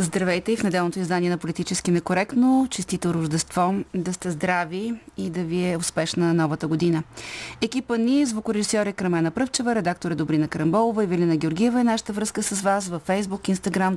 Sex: female